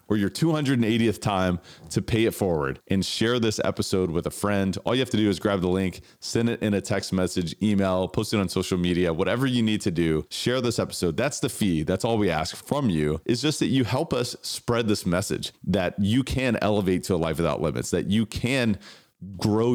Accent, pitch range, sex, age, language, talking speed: American, 90-115 Hz, male, 30-49, English, 230 wpm